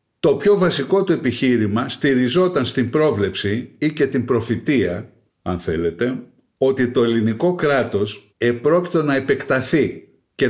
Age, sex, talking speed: 50-69, male, 125 wpm